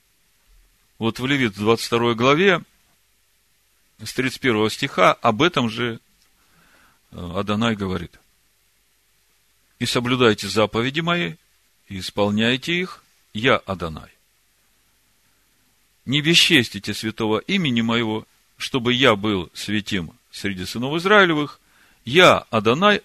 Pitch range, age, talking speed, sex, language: 105-145 Hz, 50-69, 95 wpm, male, Russian